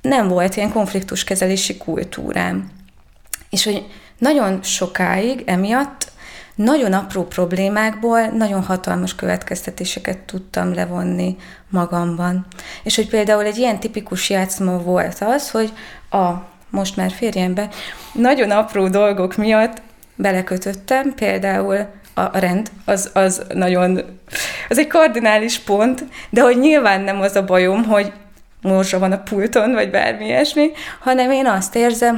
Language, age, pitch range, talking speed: Hungarian, 20-39, 190-235 Hz, 130 wpm